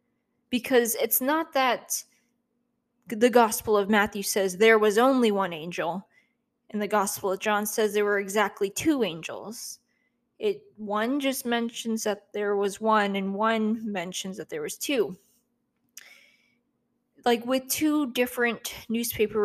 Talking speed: 140 wpm